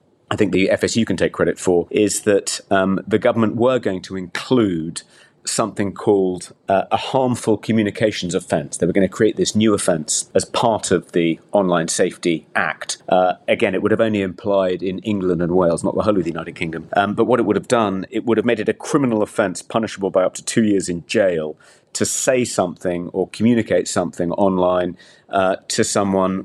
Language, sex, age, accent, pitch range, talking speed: English, male, 40-59, British, 85-110 Hz, 205 wpm